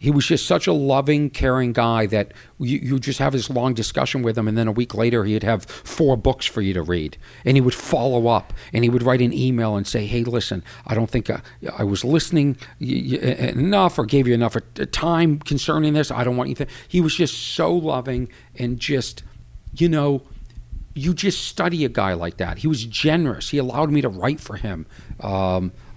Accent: American